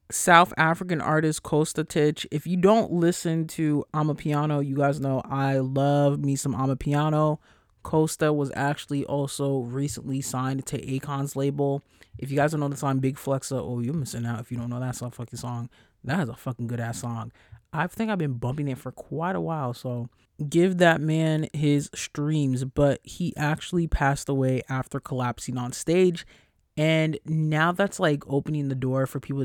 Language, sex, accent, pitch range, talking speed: English, male, American, 125-150 Hz, 185 wpm